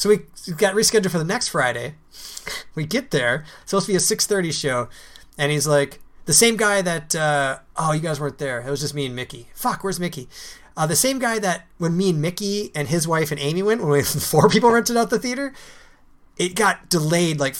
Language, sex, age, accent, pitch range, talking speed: English, male, 30-49, American, 140-190 Hz, 230 wpm